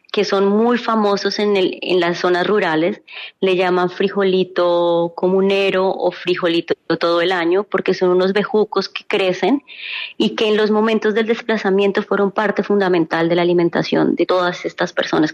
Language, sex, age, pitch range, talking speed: Spanish, female, 20-39, 170-200 Hz, 165 wpm